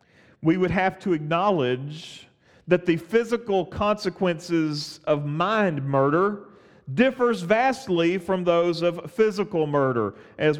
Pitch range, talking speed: 165-255 Hz, 115 wpm